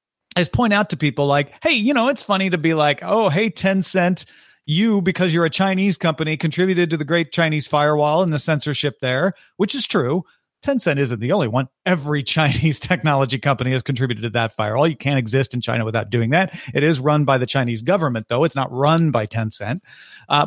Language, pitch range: English, 135-185 Hz